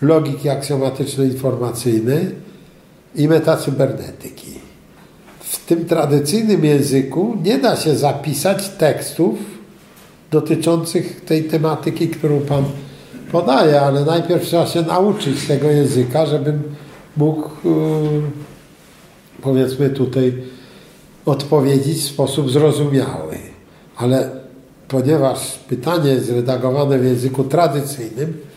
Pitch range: 135-165 Hz